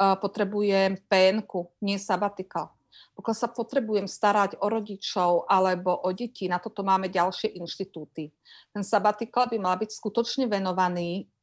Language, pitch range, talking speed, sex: Slovak, 190-230 Hz, 130 wpm, female